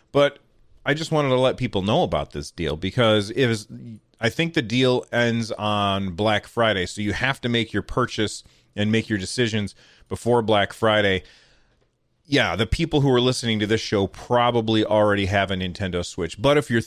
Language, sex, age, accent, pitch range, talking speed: English, male, 30-49, American, 100-120 Hz, 190 wpm